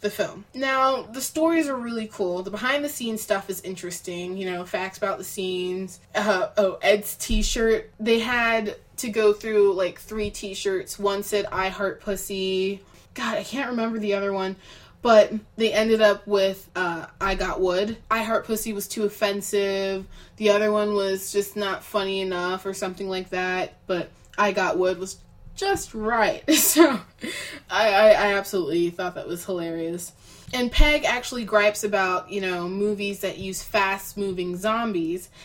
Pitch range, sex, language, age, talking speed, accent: 190-230 Hz, female, English, 20-39, 170 wpm, American